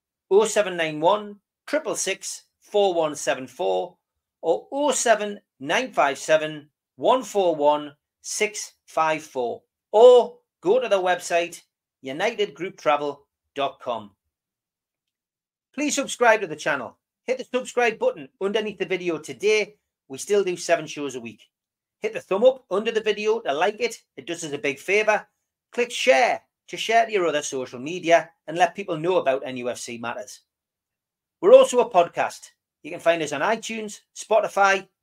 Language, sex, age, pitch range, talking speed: English, male, 40-59, 155-225 Hz, 155 wpm